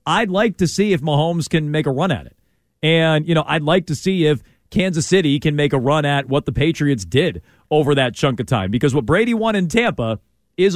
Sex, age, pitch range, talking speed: male, 40-59, 125-170 Hz, 240 wpm